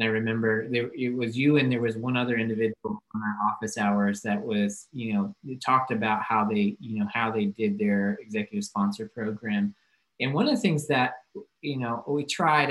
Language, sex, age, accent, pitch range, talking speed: English, male, 30-49, American, 115-150 Hz, 205 wpm